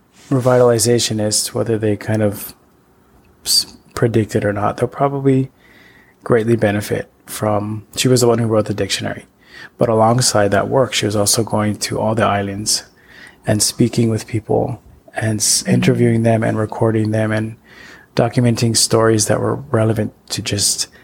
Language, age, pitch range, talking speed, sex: English, 20-39, 105-120 Hz, 150 wpm, male